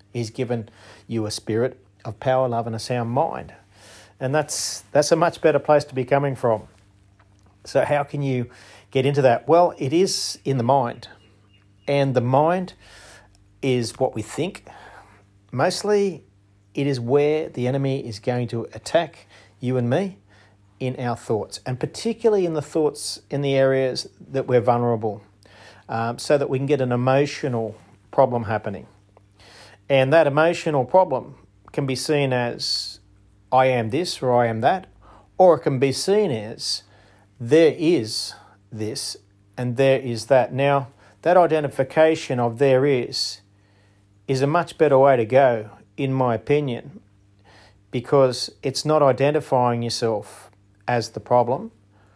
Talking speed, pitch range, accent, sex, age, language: 150 wpm, 105-140 Hz, Australian, male, 40-59, English